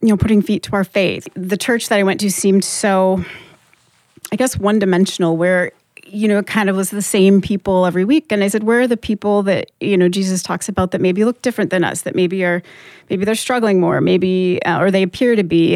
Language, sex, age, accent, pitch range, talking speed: English, female, 30-49, American, 180-220 Hz, 235 wpm